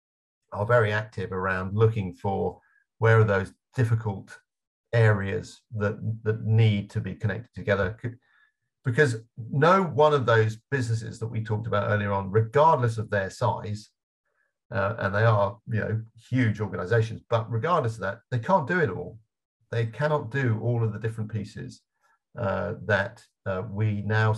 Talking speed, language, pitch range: 160 wpm, English, 100-115 Hz